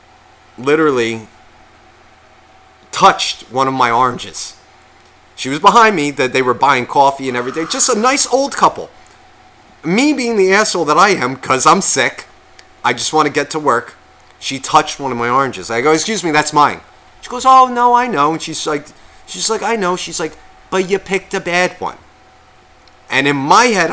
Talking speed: 190 wpm